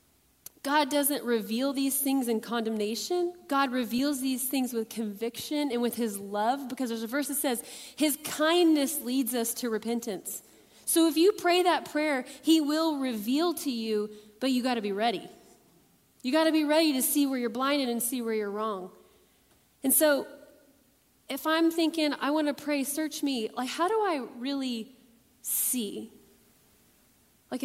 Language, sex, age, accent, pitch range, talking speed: English, female, 30-49, American, 235-295 Hz, 165 wpm